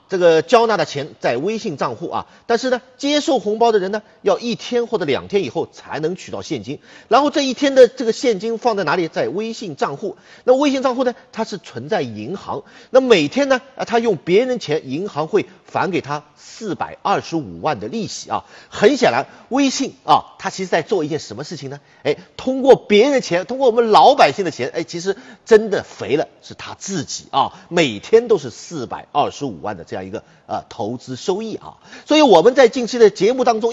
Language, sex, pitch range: Chinese, male, 195-255 Hz